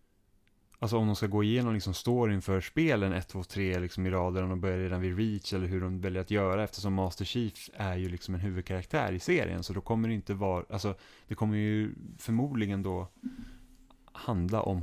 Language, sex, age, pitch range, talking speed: Swedish, male, 20-39, 90-110 Hz, 210 wpm